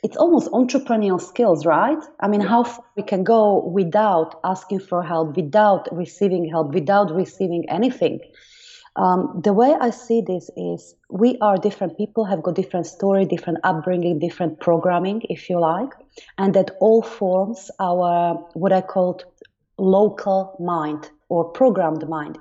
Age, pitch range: 30-49, 170-210 Hz